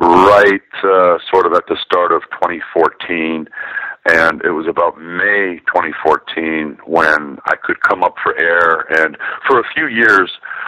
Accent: American